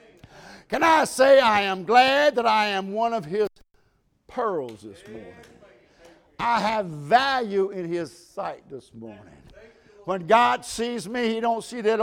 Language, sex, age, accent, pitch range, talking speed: English, male, 60-79, American, 140-215 Hz, 155 wpm